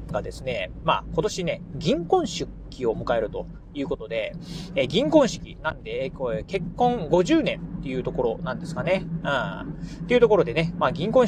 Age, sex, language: 30-49, male, Japanese